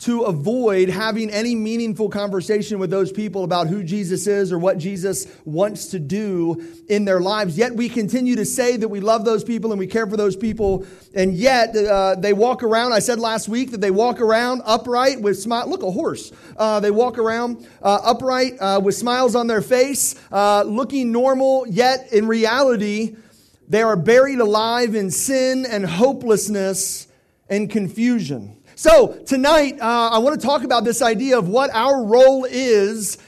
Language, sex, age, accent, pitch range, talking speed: English, male, 40-59, American, 200-245 Hz, 180 wpm